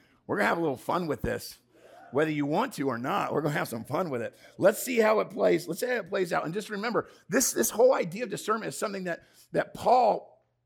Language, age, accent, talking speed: English, 50-69, American, 260 wpm